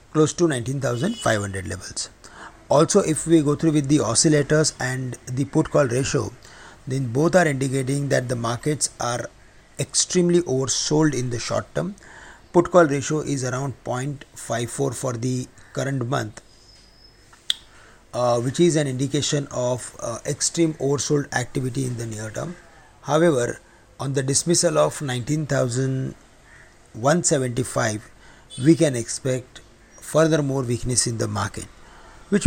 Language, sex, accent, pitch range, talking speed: English, male, Indian, 120-155 Hz, 130 wpm